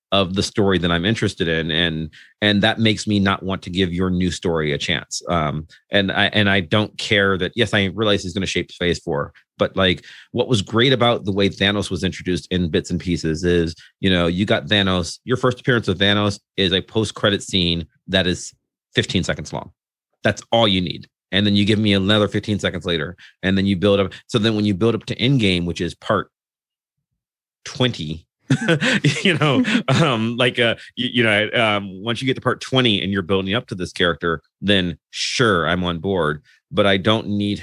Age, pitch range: 30-49, 85-110 Hz